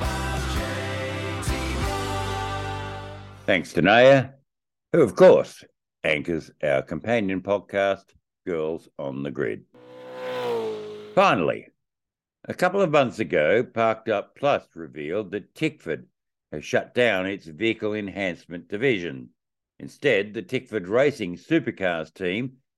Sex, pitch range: male, 90-125 Hz